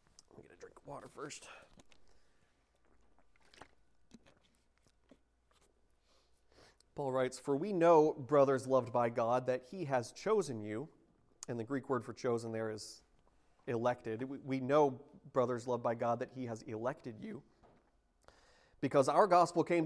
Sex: male